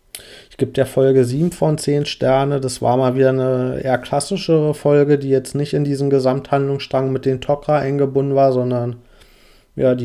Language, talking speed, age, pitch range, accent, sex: German, 185 wpm, 30-49, 120-140 Hz, German, male